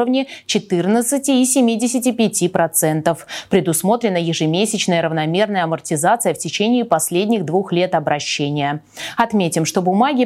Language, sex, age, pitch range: Russian, female, 20-39, 170-240 Hz